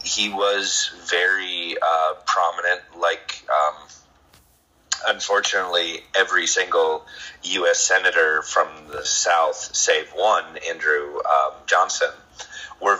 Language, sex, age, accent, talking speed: English, male, 30-49, American, 95 wpm